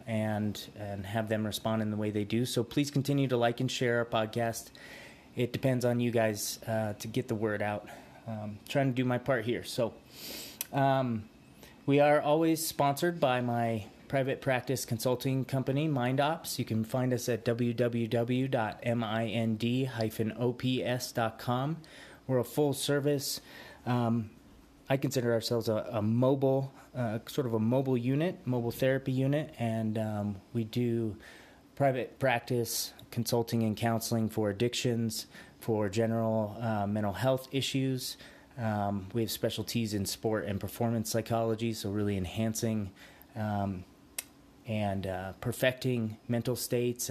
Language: English